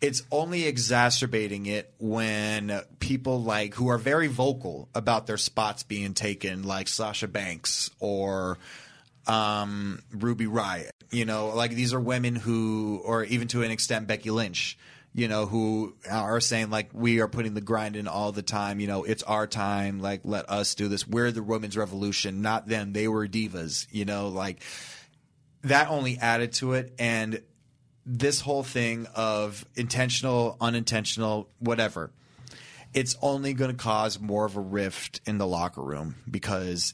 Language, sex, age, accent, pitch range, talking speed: English, male, 30-49, American, 105-120 Hz, 160 wpm